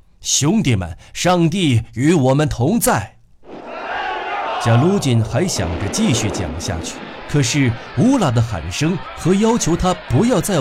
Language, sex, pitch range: Chinese, male, 105-140 Hz